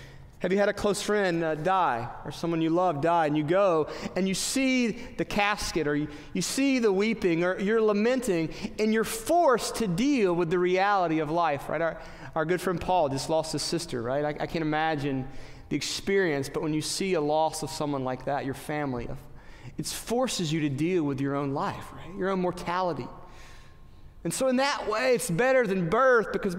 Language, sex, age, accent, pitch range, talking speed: English, male, 30-49, American, 150-205 Hz, 210 wpm